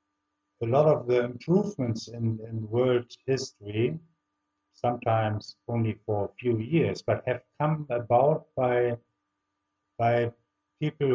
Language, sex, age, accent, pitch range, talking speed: English, male, 50-69, German, 110-130 Hz, 120 wpm